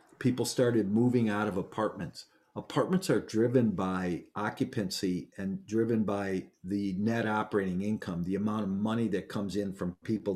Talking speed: 155 wpm